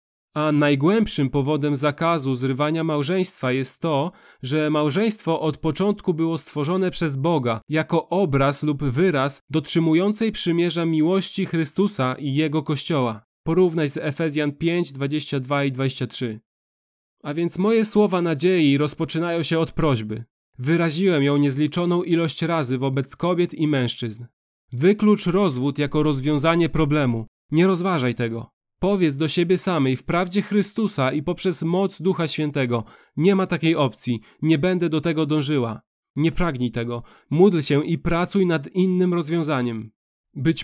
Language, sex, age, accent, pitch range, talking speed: Polish, male, 30-49, native, 140-175 Hz, 135 wpm